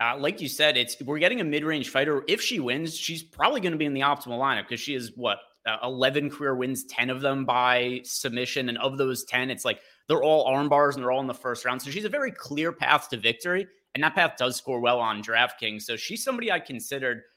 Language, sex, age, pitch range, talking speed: English, male, 30-49, 120-150 Hz, 250 wpm